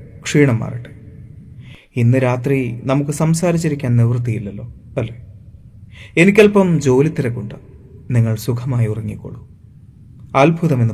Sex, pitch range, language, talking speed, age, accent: male, 115-155 Hz, Malayalam, 70 wpm, 30-49, native